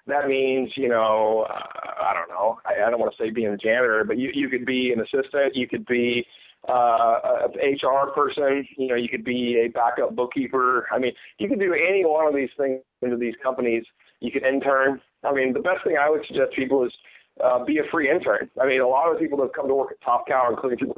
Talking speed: 250 wpm